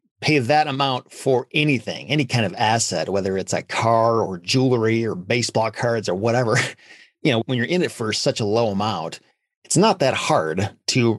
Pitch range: 105-125 Hz